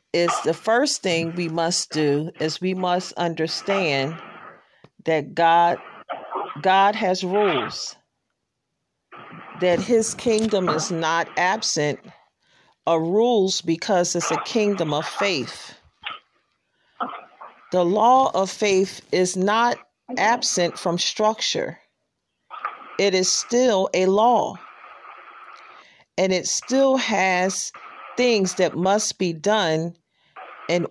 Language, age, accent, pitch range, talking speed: English, 40-59, American, 170-225 Hz, 105 wpm